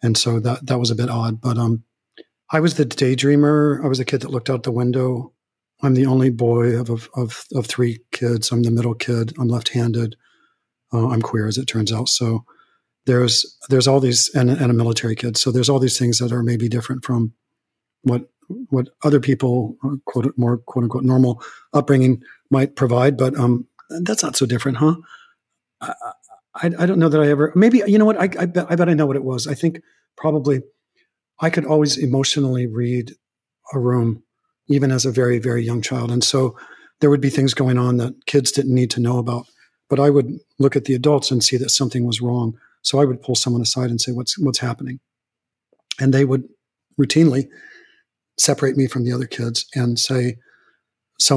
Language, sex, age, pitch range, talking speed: English, male, 40-59, 120-140 Hz, 205 wpm